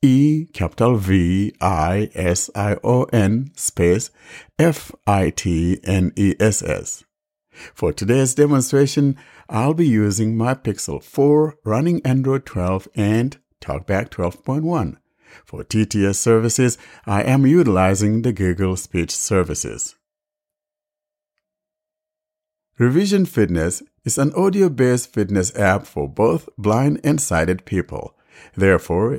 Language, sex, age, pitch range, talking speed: English, male, 60-79, 95-150 Hz, 115 wpm